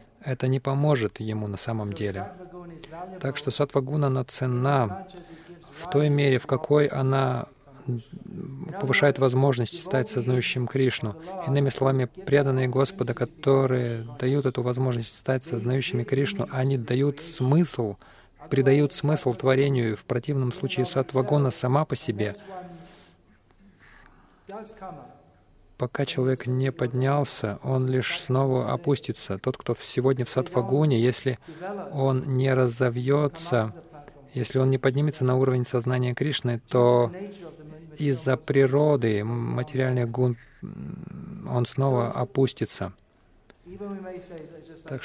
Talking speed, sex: 110 wpm, male